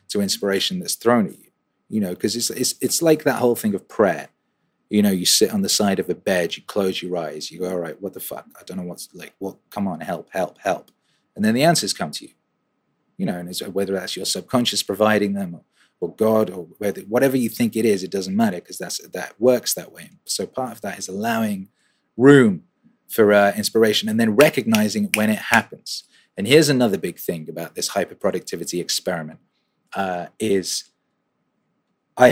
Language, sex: English, male